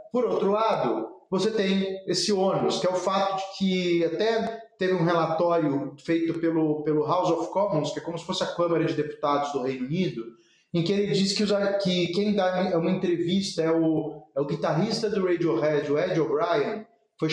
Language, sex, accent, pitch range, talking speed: Portuguese, male, Brazilian, 165-220 Hz, 195 wpm